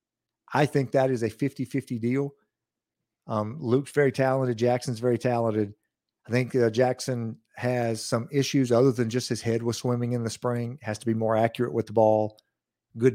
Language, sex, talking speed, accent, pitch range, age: English, male, 185 wpm, American, 115-135 Hz, 50-69